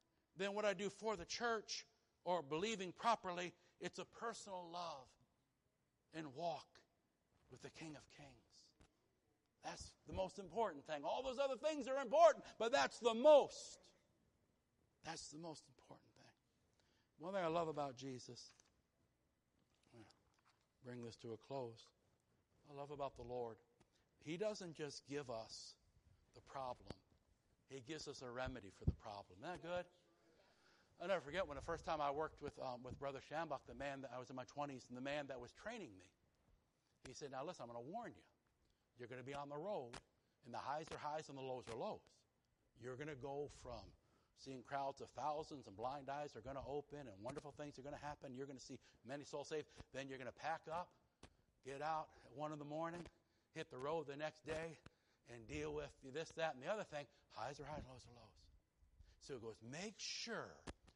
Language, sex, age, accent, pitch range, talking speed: English, male, 60-79, American, 120-160 Hz, 195 wpm